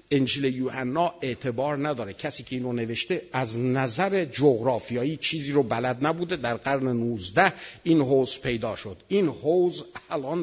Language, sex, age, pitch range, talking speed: Persian, male, 50-69, 130-190 Hz, 145 wpm